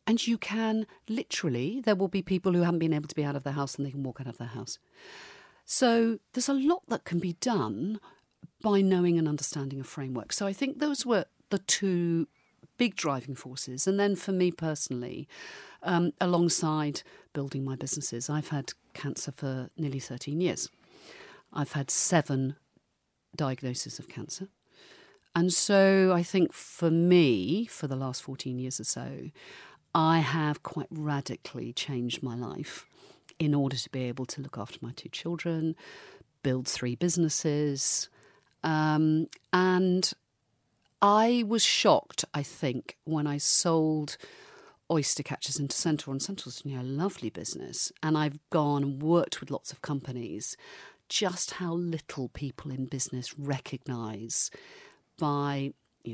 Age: 50-69